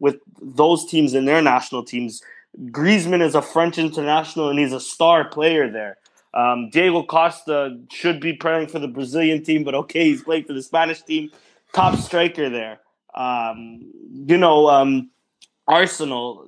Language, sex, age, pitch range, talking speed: English, male, 20-39, 135-165 Hz, 160 wpm